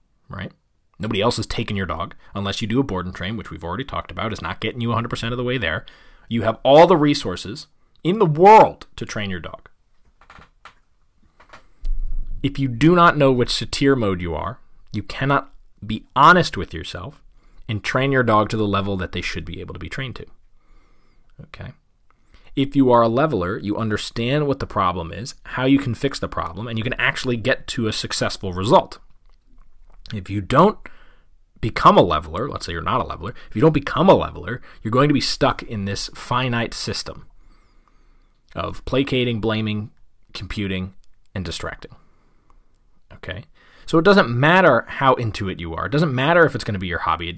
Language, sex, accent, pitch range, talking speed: English, male, American, 100-130 Hz, 195 wpm